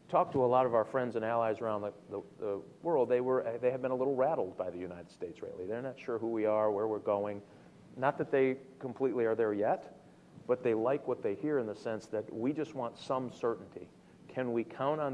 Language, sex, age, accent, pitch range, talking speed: English, male, 40-59, American, 105-130 Hz, 245 wpm